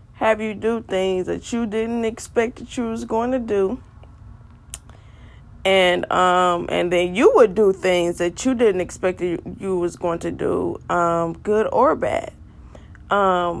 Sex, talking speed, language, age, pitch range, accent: female, 165 wpm, English, 20-39, 165-225 Hz, American